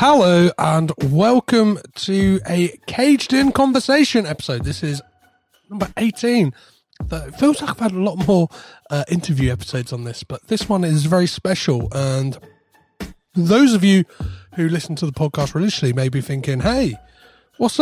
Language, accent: English, British